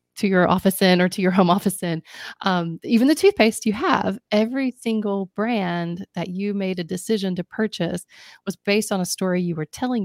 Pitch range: 165-210 Hz